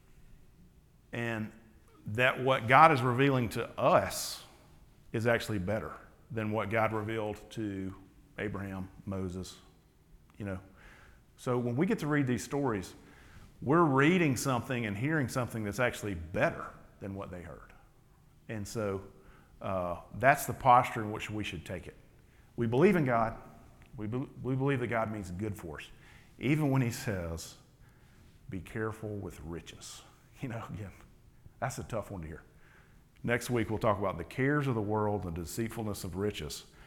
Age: 50-69